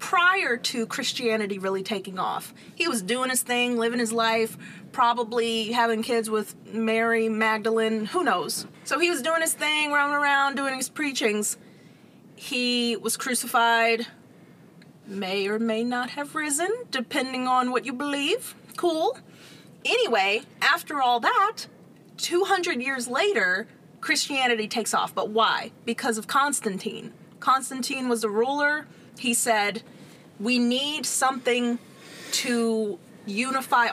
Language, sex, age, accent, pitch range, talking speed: English, female, 30-49, American, 215-255 Hz, 130 wpm